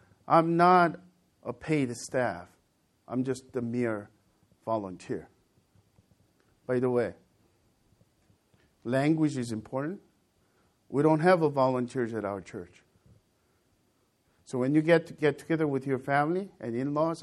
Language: English